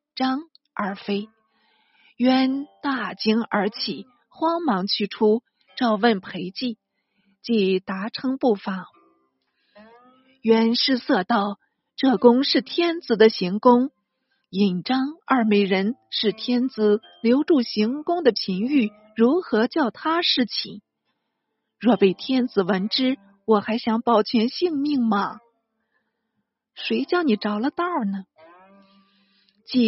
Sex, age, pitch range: female, 50-69, 210-270 Hz